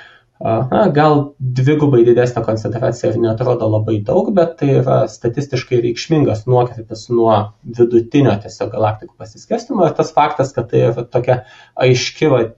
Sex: male